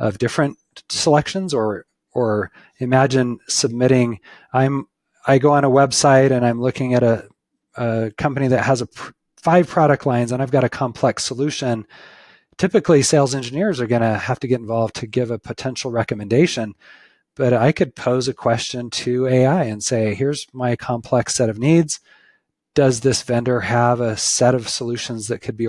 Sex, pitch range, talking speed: male, 110-135 Hz, 175 wpm